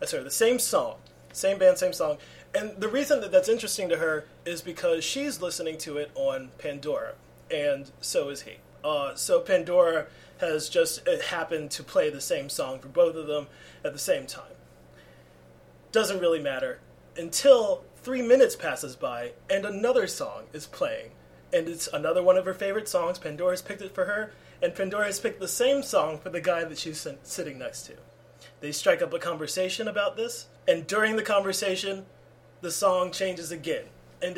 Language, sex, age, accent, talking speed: English, male, 30-49, American, 180 wpm